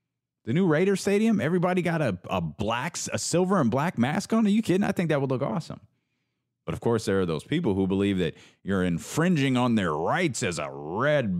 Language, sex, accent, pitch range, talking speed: English, male, American, 75-115 Hz, 220 wpm